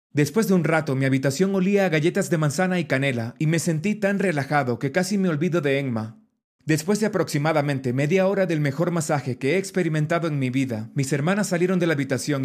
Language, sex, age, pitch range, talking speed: Spanish, male, 30-49, 140-190 Hz, 210 wpm